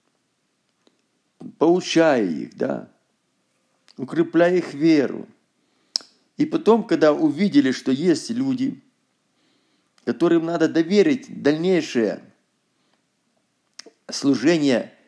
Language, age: Russian, 50-69